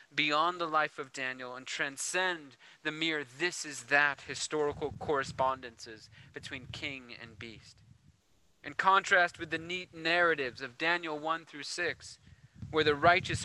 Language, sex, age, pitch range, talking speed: English, male, 30-49, 130-165 Hz, 145 wpm